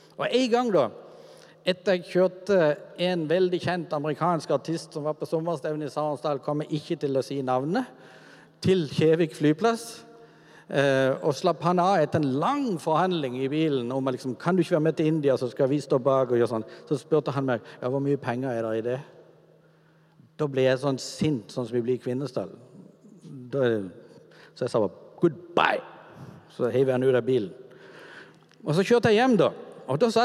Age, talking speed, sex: 50-69, 200 wpm, male